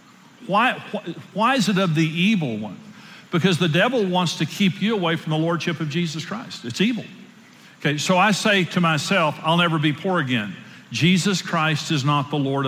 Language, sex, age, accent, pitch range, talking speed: English, male, 50-69, American, 150-190 Hz, 195 wpm